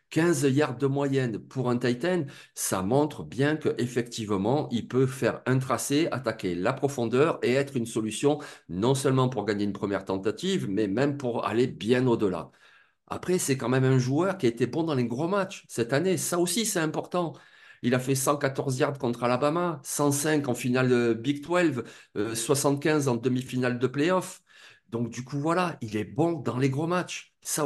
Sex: male